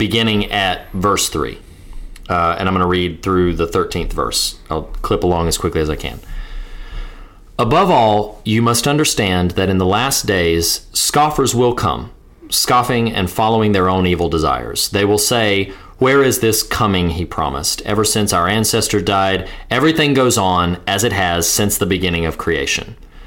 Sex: male